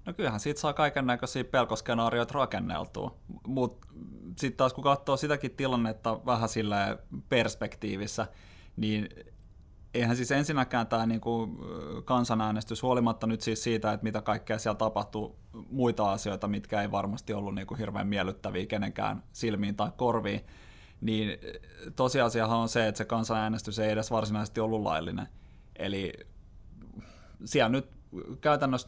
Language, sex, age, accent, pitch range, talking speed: Finnish, male, 20-39, native, 105-120 Hz, 130 wpm